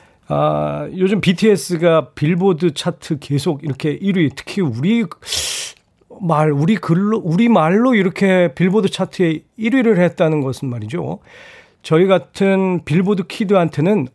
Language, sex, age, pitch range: Korean, male, 40-59, 145-200 Hz